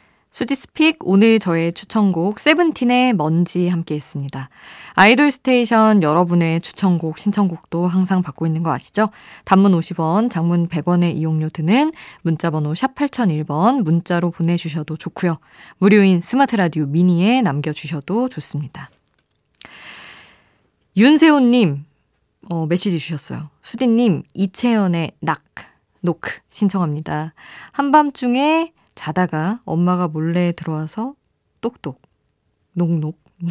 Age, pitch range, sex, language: 20-39, 165-225 Hz, female, Korean